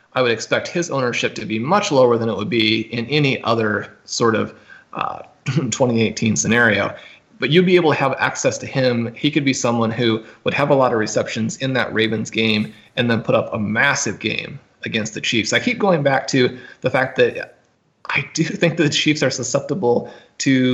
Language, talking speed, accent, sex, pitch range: English, 210 wpm, American, male, 115-145 Hz